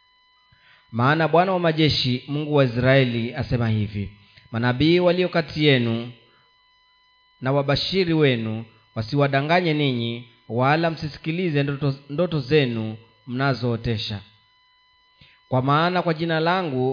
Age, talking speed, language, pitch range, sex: 30-49, 100 wpm, Swahili, 120-165 Hz, male